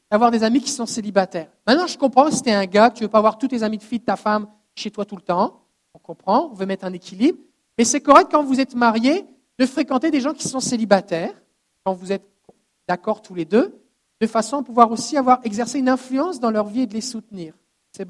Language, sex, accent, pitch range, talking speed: French, male, French, 200-270 Hz, 255 wpm